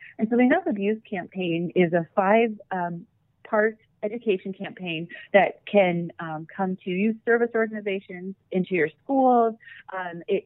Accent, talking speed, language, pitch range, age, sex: American, 145 wpm, English, 170-215 Hz, 30-49, female